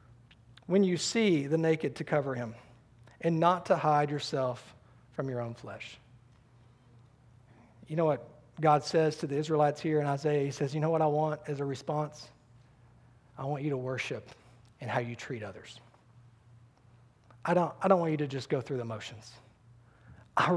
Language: English